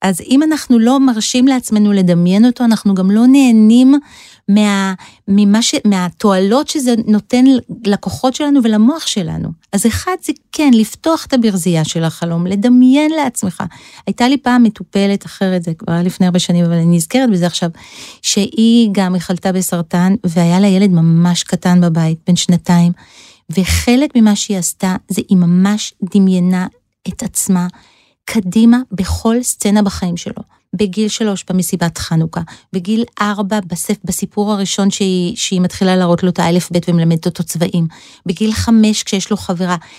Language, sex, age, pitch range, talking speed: Hebrew, female, 40-59, 180-225 Hz, 150 wpm